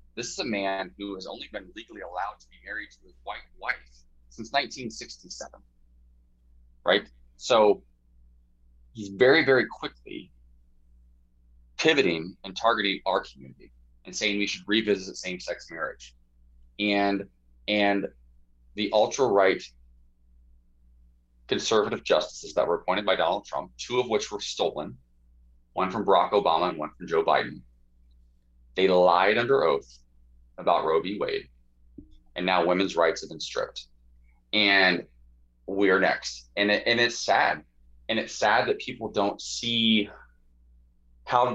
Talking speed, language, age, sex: 135 wpm, English, 20-39, male